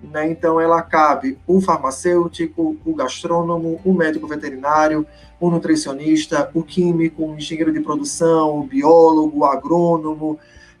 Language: Portuguese